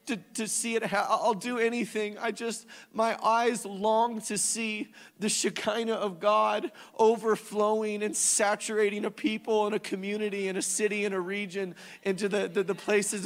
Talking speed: 165 wpm